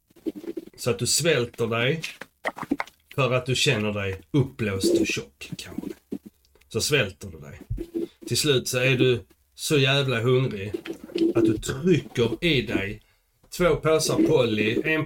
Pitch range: 115-155 Hz